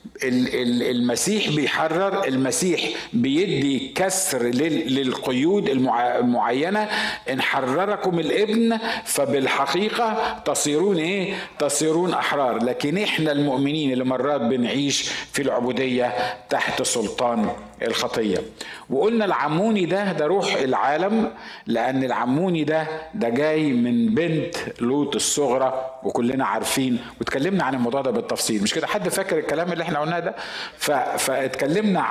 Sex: male